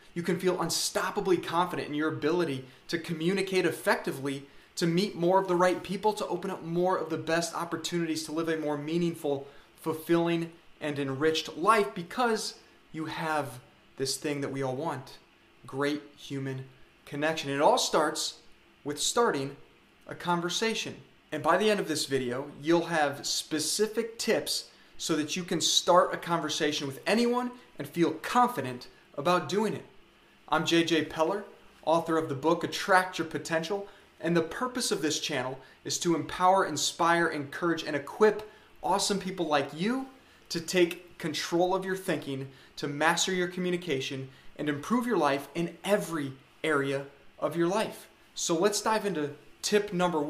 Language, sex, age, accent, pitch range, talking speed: English, male, 30-49, American, 150-185 Hz, 160 wpm